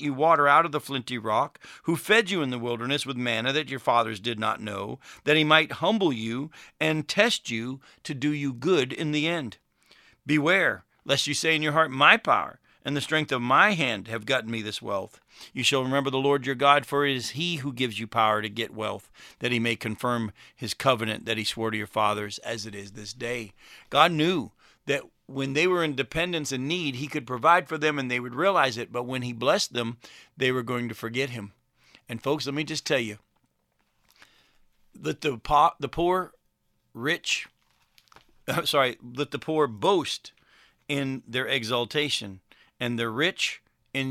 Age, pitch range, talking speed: 50-69, 115-150 Hz, 200 wpm